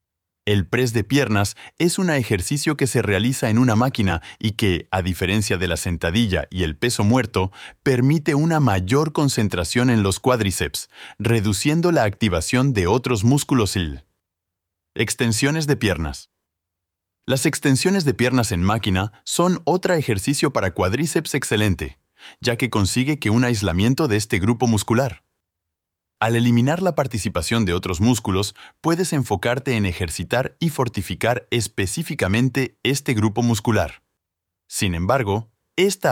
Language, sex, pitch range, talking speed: Spanish, male, 95-135 Hz, 135 wpm